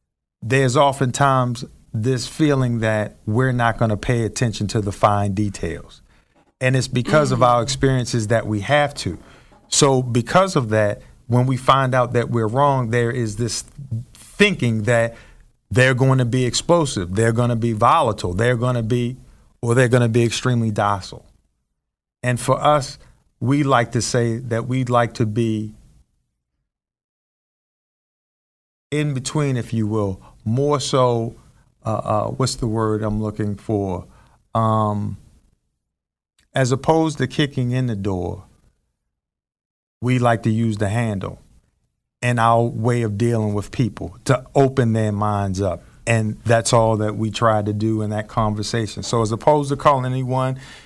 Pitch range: 105-130 Hz